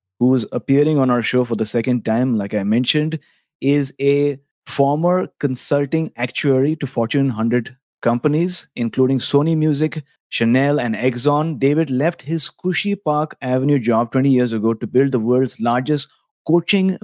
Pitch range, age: 120-145 Hz, 30-49